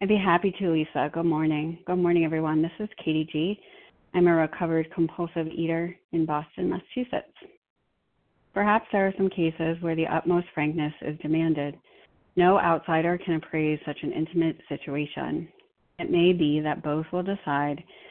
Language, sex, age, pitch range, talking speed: English, female, 40-59, 155-175 Hz, 160 wpm